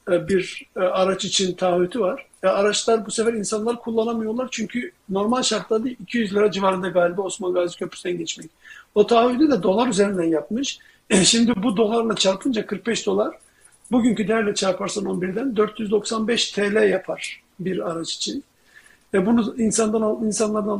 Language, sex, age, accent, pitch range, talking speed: Turkish, male, 50-69, native, 195-235 Hz, 140 wpm